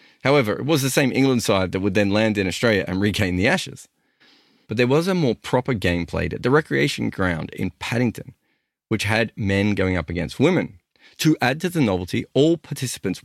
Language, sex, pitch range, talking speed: English, male, 95-140 Hz, 205 wpm